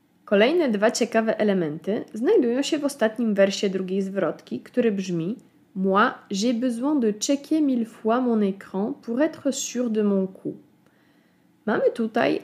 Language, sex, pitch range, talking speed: Polish, female, 210-270 Hz, 145 wpm